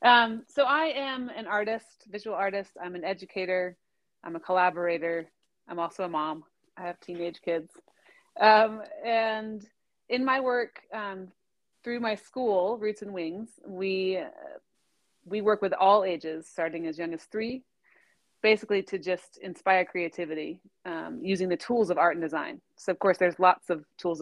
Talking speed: 165 wpm